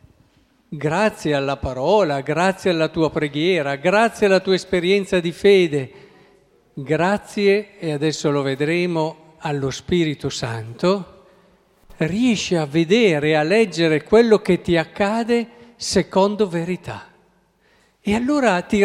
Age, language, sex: 50-69, Italian, male